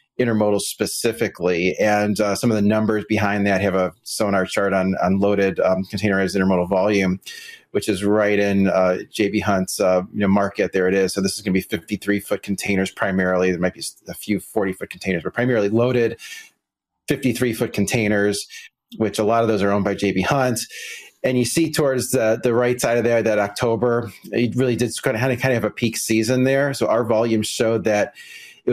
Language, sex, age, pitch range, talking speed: English, male, 30-49, 100-120 Hz, 205 wpm